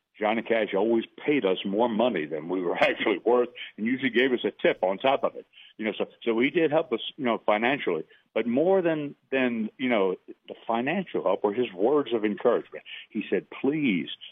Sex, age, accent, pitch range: male, 60-79, American, 95-150 Hz